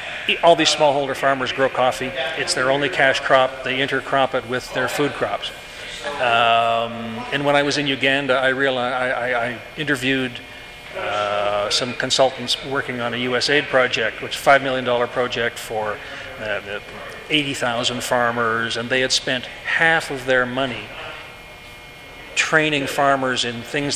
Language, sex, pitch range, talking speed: English, male, 125-140 Hz, 150 wpm